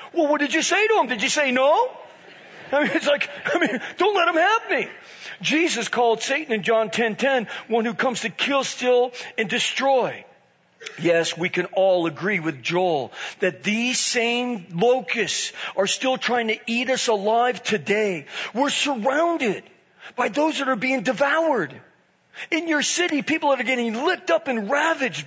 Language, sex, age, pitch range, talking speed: English, male, 40-59, 220-295 Hz, 175 wpm